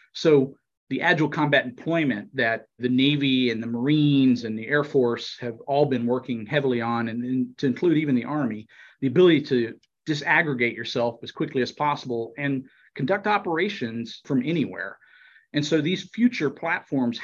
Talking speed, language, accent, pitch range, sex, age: 160 wpm, English, American, 115-145 Hz, male, 40-59